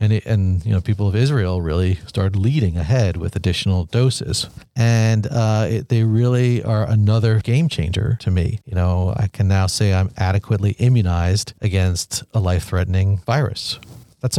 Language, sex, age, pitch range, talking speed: English, male, 40-59, 100-125 Hz, 170 wpm